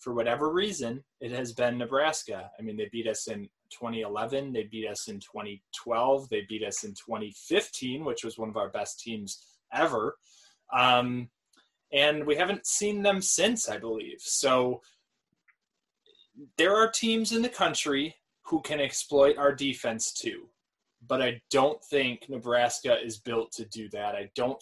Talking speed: 160 wpm